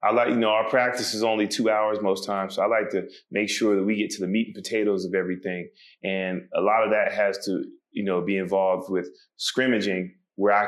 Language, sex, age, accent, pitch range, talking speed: English, male, 20-39, American, 95-110 Hz, 240 wpm